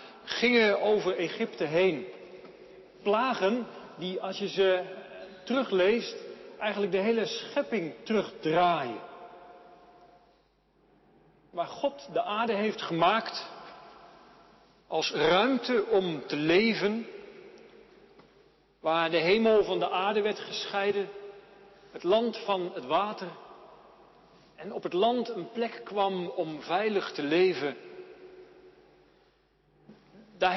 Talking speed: 100 wpm